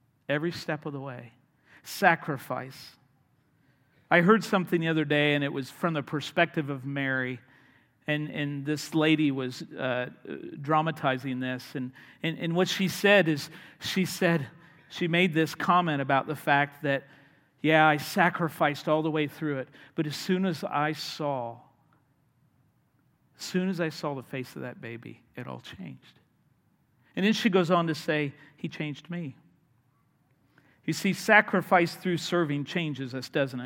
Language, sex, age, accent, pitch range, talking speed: English, male, 50-69, American, 140-180 Hz, 160 wpm